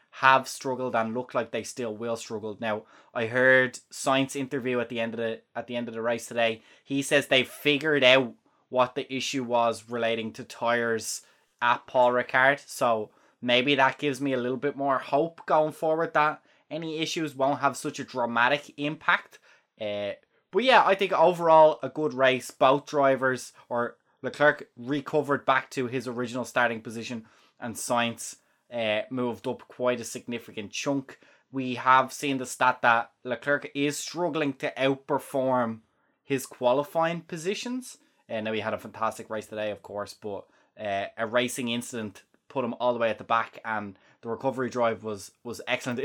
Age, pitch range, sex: 20-39, 115-140 Hz, male